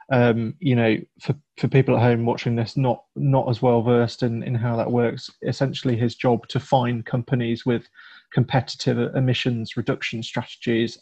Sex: male